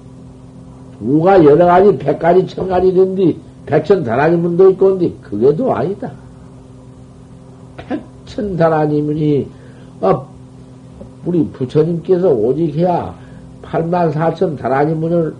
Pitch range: 130-165 Hz